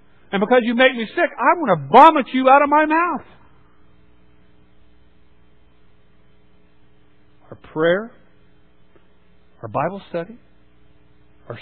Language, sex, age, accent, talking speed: English, male, 50-69, American, 110 wpm